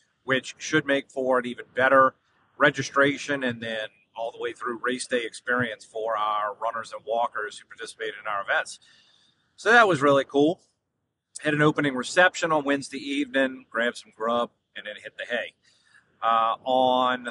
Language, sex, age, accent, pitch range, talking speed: English, male, 40-59, American, 120-145 Hz, 170 wpm